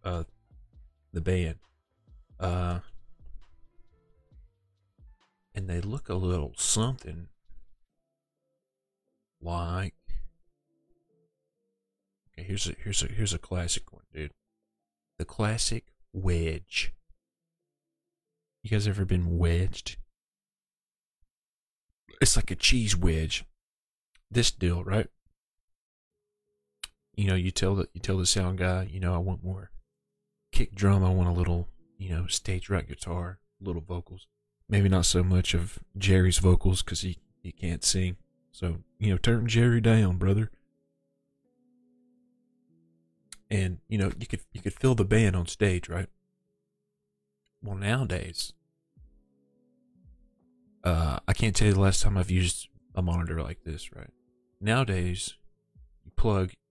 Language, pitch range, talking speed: English, 85-110 Hz, 125 wpm